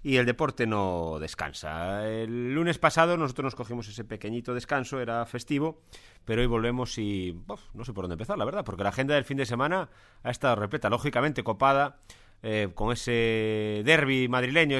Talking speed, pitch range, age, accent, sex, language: 185 wpm, 105-145 Hz, 30-49, Spanish, male, Spanish